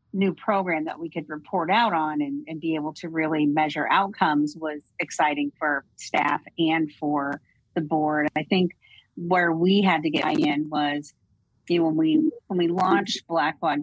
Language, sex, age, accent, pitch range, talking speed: English, female, 40-59, American, 145-170 Hz, 180 wpm